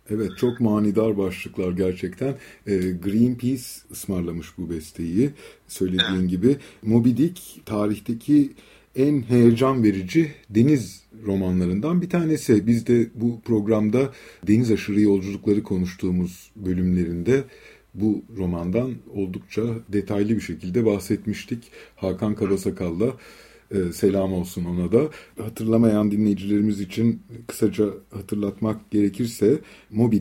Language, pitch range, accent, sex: Turkish, 95-120 Hz, native, male